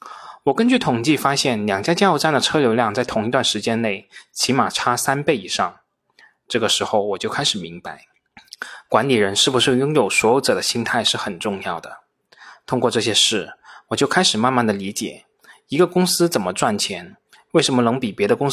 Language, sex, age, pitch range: Chinese, male, 20-39, 115-145 Hz